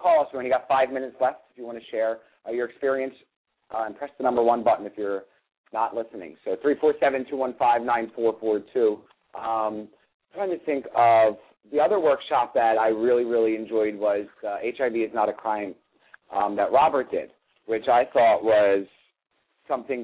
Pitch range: 110-135 Hz